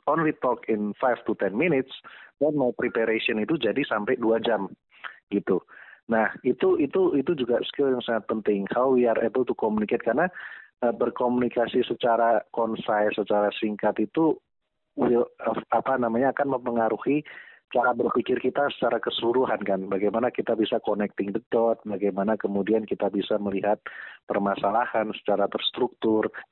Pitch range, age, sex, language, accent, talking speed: 105-125 Hz, 30-49, male, Indonesian, native, 145 wpm